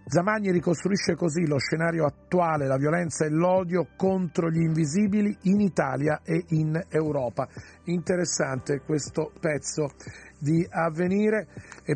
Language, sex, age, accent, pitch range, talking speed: Italian, male, 40-59, native, 155-180 Hz, 120 wpm